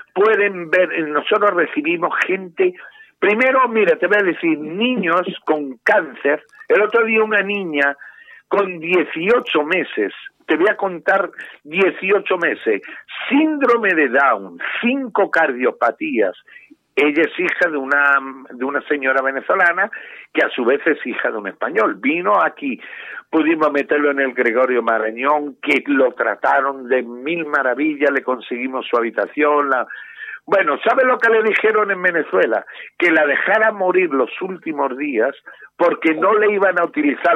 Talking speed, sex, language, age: 145 wpm, male, Spanish, 50-69